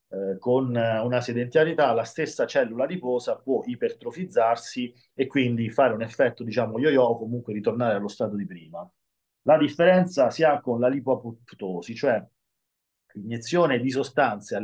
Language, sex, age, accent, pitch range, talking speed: Italian, male, 40-59, native, 110-135 Hz, 140 wpm